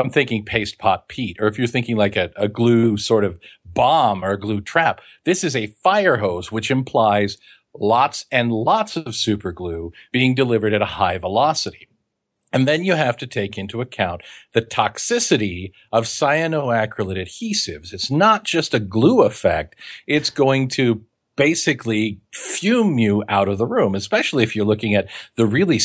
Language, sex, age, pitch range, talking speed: English, male, 50-69, 105-140 Hz, 170 wpm